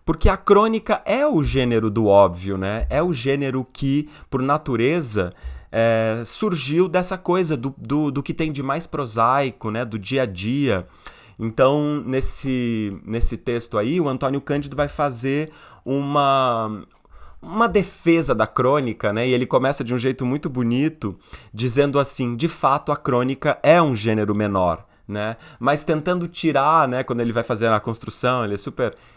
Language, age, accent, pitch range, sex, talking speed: Portuguese, 20-39, Brazilian, 110-160 Hz, male, 160 wpm